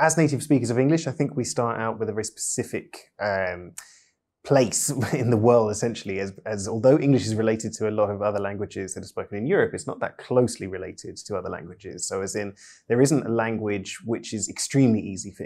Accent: British